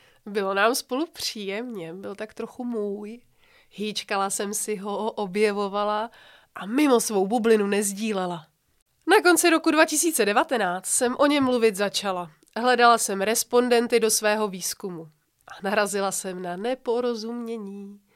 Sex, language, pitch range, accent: female, English, 200-245 Hz, Czech